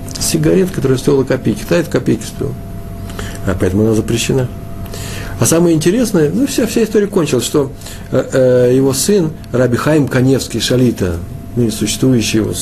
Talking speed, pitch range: 135 wpm, 100-130 Hz